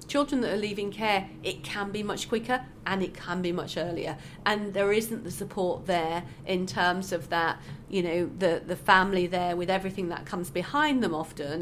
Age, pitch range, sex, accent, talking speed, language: 40-59, 170-200 Hz, female, British, 200 wpm, English